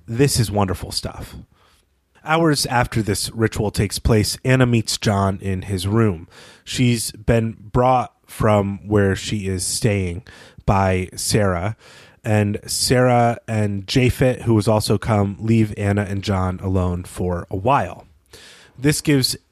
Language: English